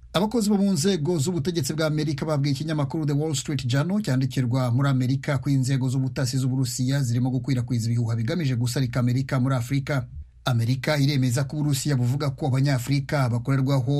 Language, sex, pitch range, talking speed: Swahili, male, 125-140 Hz, 165 wpm